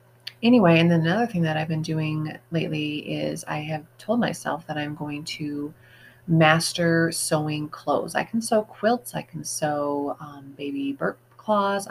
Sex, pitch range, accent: female, 140-165 Hz, American